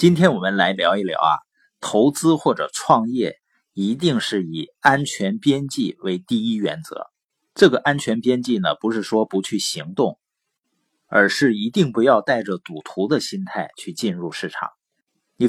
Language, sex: Chinese, male